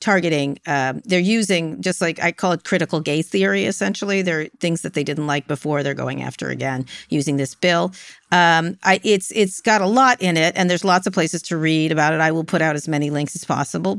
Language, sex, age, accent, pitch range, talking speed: English, female, 50-69, American, 155-195 Hz, 230 wpm